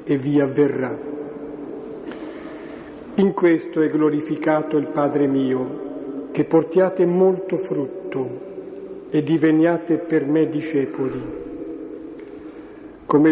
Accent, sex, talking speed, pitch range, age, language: native, male, 90 wpm, 145-170 Hz, 50-69, Italian